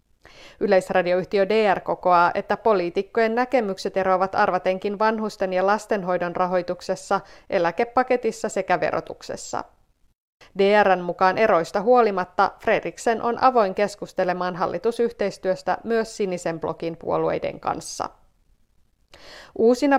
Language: Finnish